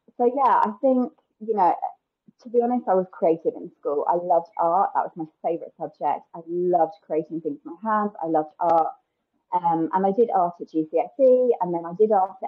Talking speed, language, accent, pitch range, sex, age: 210 wpm, English, British, 165-265 Hz, female, 30-49